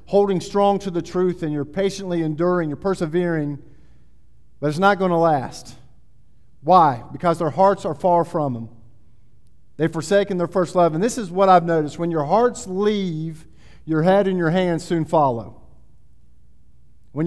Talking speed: 165 wpm